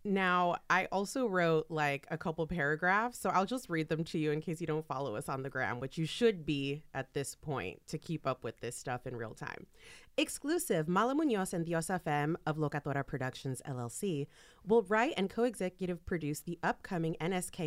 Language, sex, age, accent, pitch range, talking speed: English, female, 30-49, American, 145-190 Hz, 195 wpm